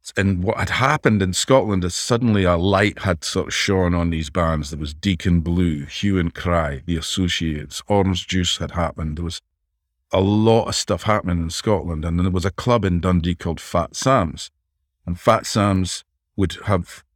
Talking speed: 190 wpm